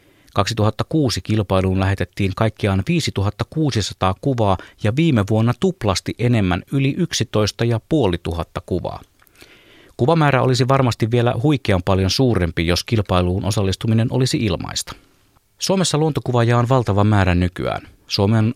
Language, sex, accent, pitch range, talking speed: Finnish, male, native, 95-125 Hz, 115 wpm